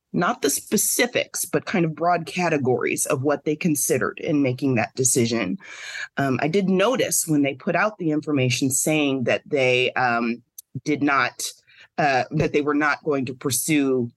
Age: 30-49